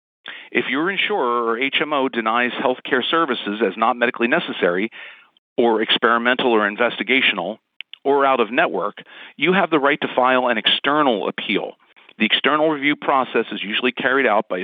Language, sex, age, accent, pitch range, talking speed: English, male, 50-69, American, 115-145 Hz, 155 wpm